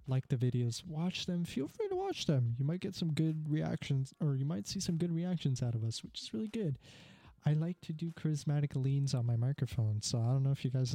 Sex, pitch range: male, 125-160 Hz